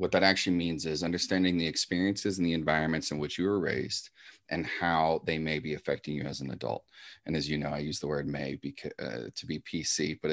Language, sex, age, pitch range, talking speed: English, male, 30-49, 75-90 Hz, 240 wpm